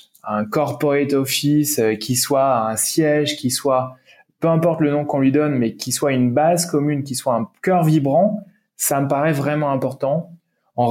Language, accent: French, French